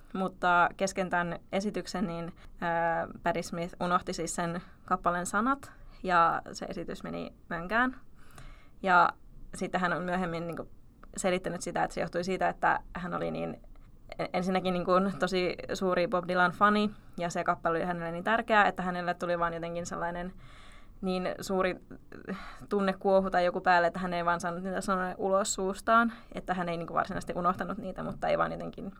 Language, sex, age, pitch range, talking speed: Finnish, female, 20-39, 175-195 Hz, 165 wpm